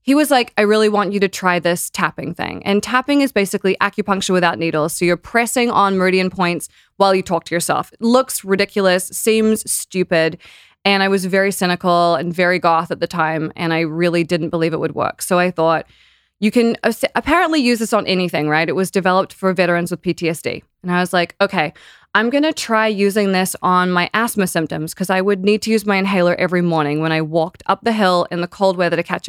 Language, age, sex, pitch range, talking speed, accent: English, 20-39, female, 175-215 Hz, 225 wpm, American